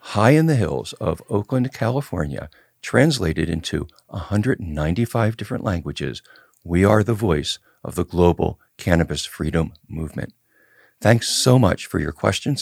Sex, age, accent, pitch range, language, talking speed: male, 50-69, American, 80-110 Hz, English, 135 wpm